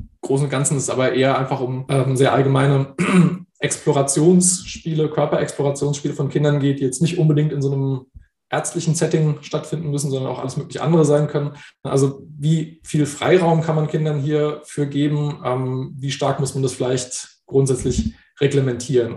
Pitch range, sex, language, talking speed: 135-155 Hz, male, German, 165 wpm